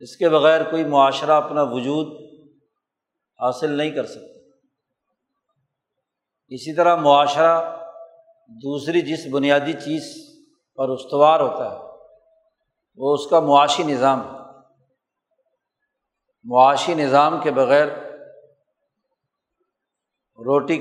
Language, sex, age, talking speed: Urdu, male, 50-69, 95 wpm